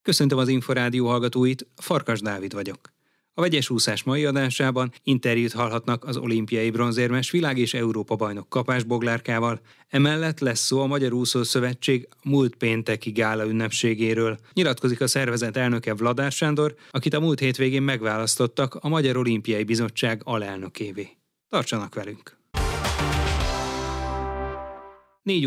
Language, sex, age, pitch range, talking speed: Hungarian, male, 30-49, 115-135 Hz, 125 wpm